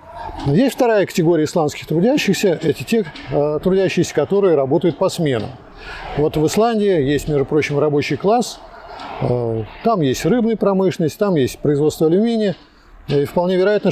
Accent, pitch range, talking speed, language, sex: native, 140-195 Hz, 135 wpm, Russian, male